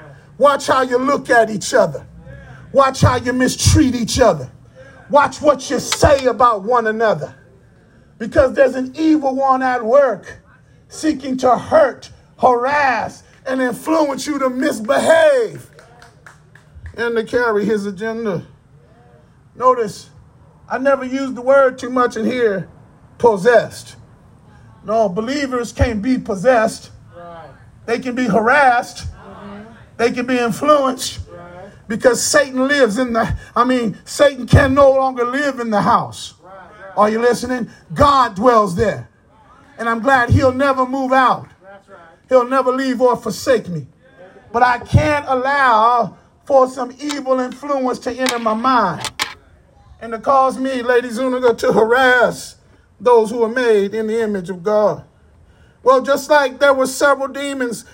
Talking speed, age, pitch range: 140 wpm, 40-59, 220-270 Hz